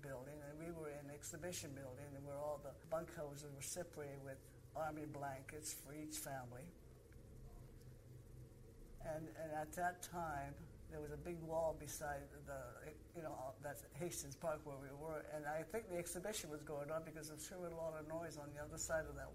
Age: 60-79